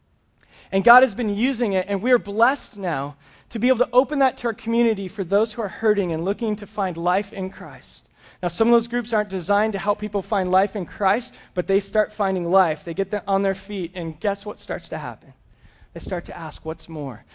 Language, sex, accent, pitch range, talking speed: English, male, American, 195-235 Hz, 240 wpm